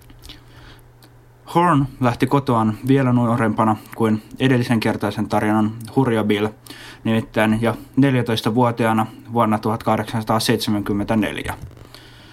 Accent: native